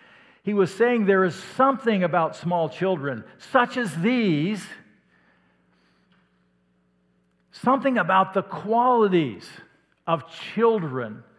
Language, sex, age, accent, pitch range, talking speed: English, male, 50-69, American, 130-200 Hz, 95 wpm